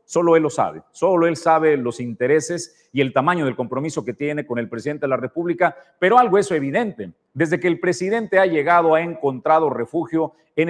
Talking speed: 210 wpm